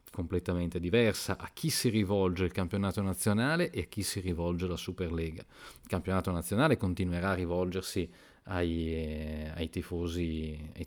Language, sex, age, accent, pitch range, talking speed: Italian, male, 40-59, native, 85-100 Hz, 145 wpm